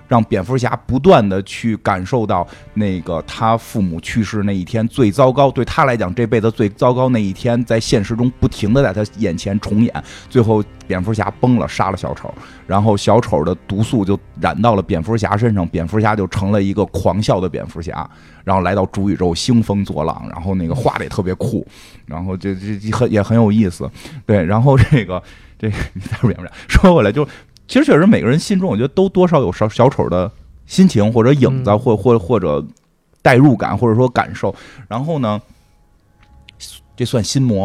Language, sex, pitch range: Chinese, male, 95-120 Hz